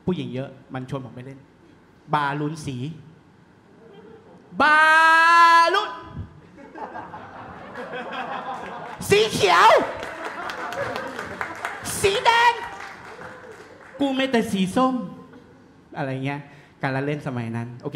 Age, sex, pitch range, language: 30-49, male, 135-185 Hz, Thai